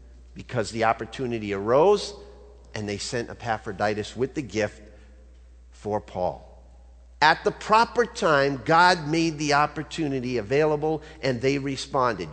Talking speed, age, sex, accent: 120 wpm, 50-69, male, American